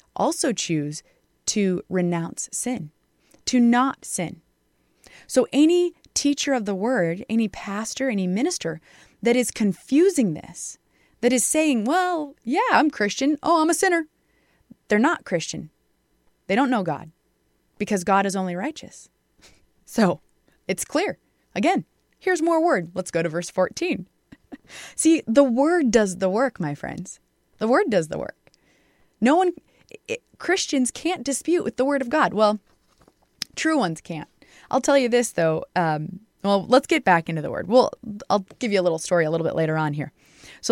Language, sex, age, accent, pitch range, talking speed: English, female, 20-39, American, 180-275 Hz, 165 wpm